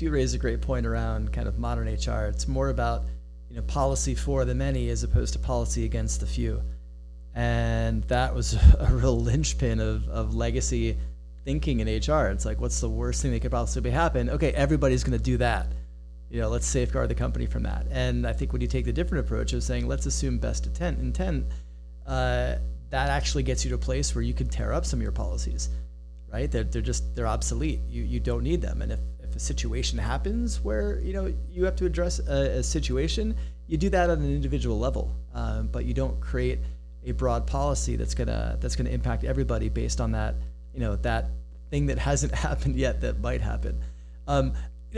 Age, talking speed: 30-49, 210 wpm